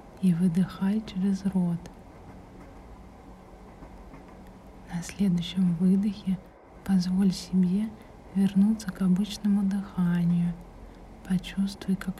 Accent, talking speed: native, 75 wpm